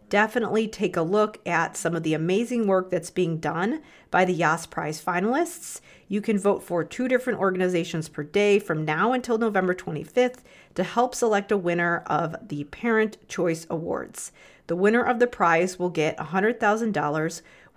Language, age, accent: English, 40-59, American